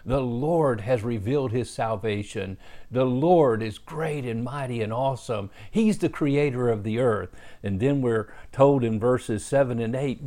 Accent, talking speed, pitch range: American, 170 wpm, 120-160 Hz